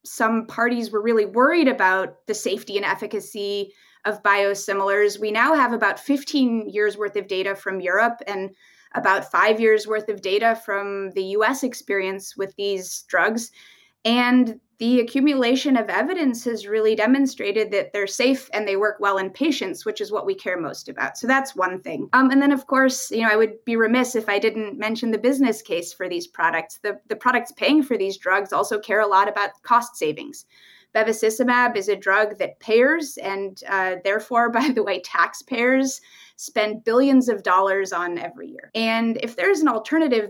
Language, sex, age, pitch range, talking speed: English, female, 20-39, 205-260 Hz, 190 wpm